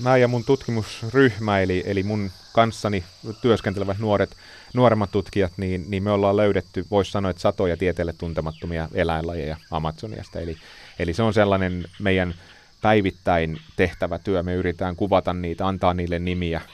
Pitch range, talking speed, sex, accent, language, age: 90-105 Hz, 145 wpm, male, native, Finnish, 30-49